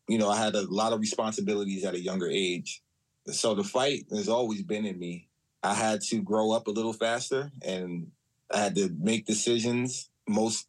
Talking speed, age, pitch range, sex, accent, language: 195 wpm, 20-39, 100-120 Hz, male, American, English